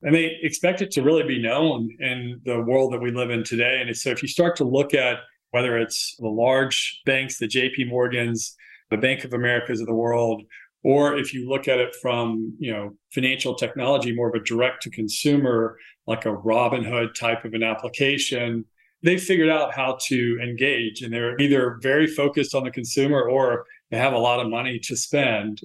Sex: male